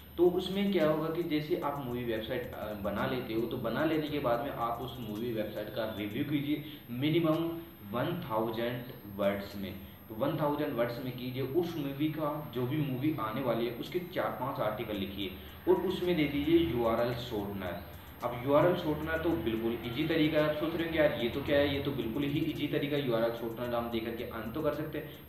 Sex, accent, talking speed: male, native, 210 wpm